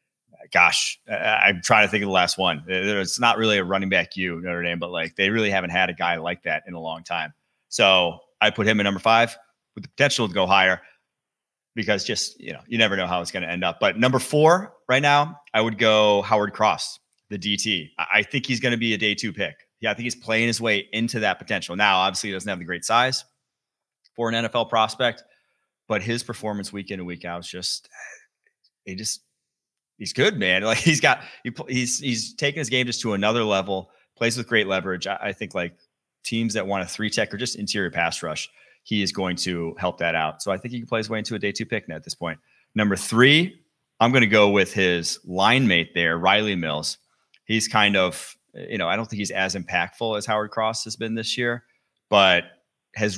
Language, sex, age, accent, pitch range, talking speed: English, male, 30-49, American, 95-115 Hz, 230 wpm